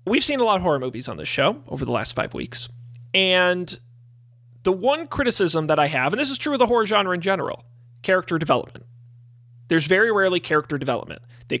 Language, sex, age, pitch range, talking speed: English, male, 30-49, 120-200 Hz, 205 wpm